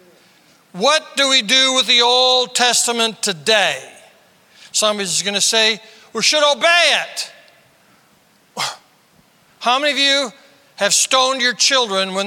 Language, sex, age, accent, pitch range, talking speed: English, male, 60-79, American, 225-315 Hz, 125 wpm